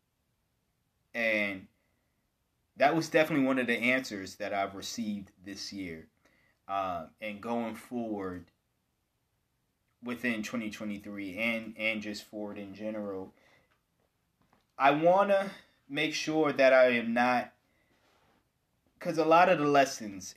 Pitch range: 105-140 Hz